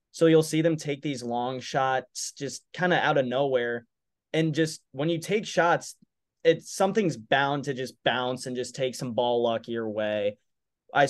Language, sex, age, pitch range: English, male, 20-39, 125-155 Hz